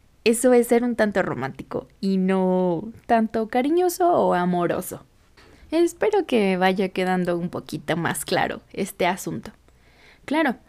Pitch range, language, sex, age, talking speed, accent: 180-225 Hz, Spanish, female, 20-39, 130 wpm, Mexican